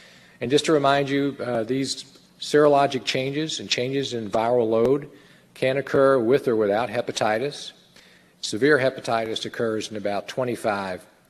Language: English